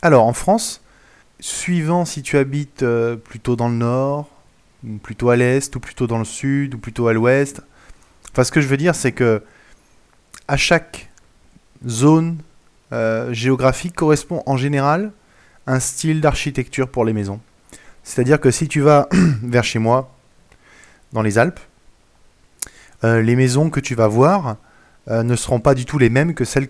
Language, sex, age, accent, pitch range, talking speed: French, male, 20-39, French, 110-140 Hz, 170 wpm